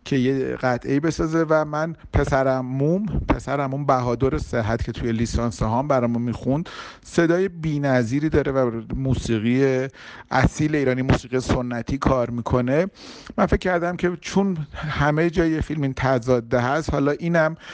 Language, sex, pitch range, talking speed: Persian, male, 125-150 Hz, 135 wpm